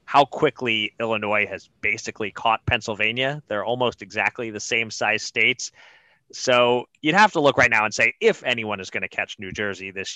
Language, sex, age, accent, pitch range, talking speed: English, male, 30-49, American, 105-135 Hz, 190 wpm